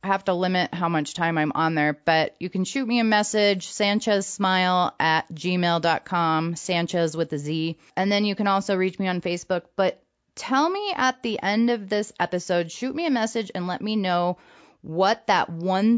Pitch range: 165-205 Hz